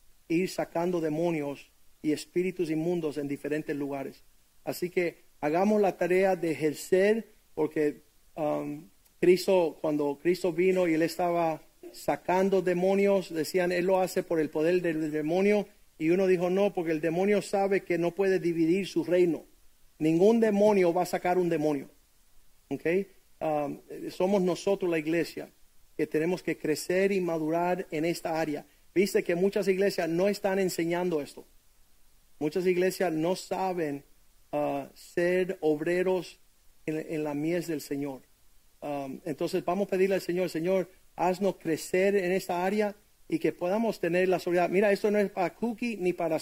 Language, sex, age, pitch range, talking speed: Spanish, male, 40-59, 155-190 Hz, 155 wpm